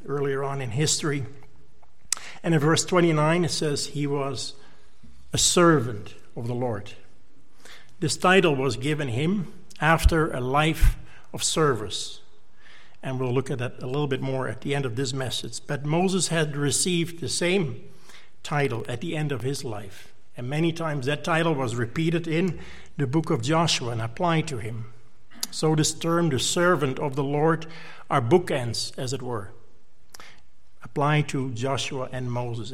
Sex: male